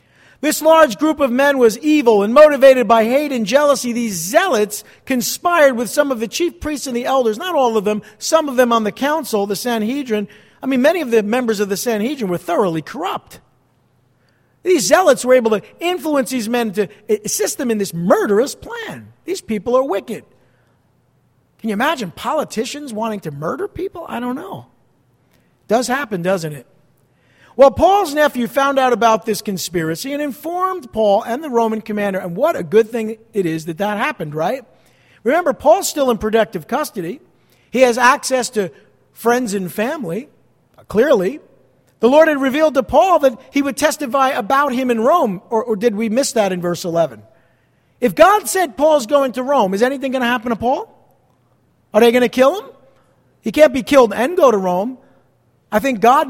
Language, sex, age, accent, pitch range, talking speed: English, male, 50-69, American, 210-280 Hz, 190 wpm